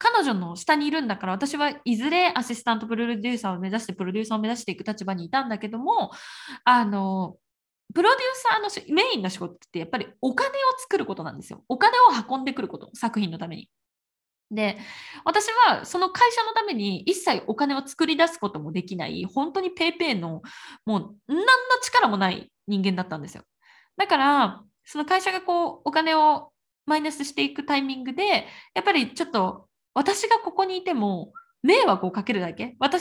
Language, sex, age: Japanese, female, 20-39